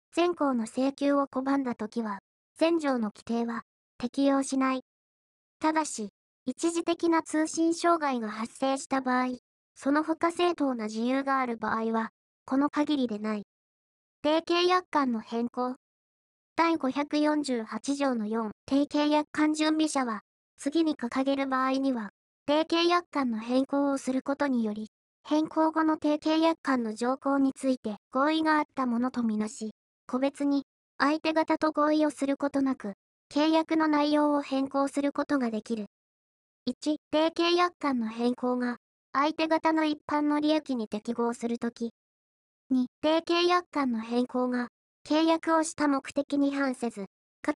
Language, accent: Japanese, native